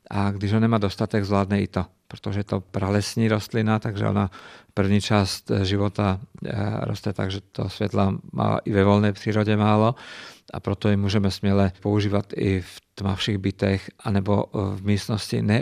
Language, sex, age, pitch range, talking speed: Czech, male, 50-69, 100-110 Hz, 165 wpm